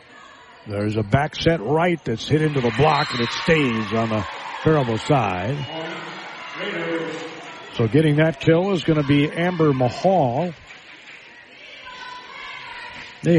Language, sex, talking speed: English, male, 120 wpm